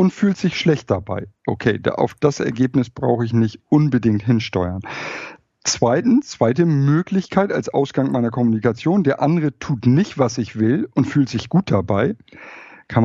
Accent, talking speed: German, 155 wpm